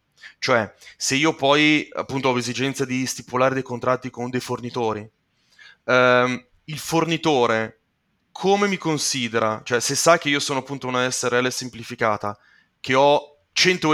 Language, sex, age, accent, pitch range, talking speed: Italian, male, 30-49, native, 125-150 Hz, 140 wpm